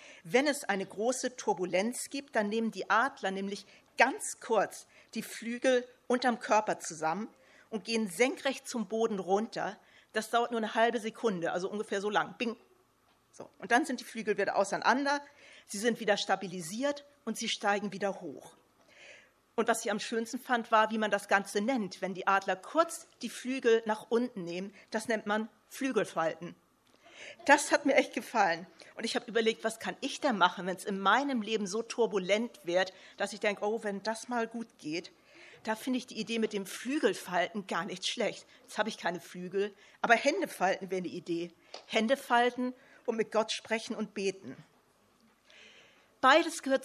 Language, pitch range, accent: German, 195-240 Hz, German